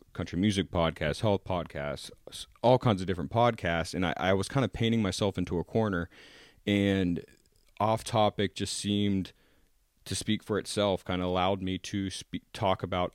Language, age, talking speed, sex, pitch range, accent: English, 30-49, 175 wpm, male, 85-105 Hz, American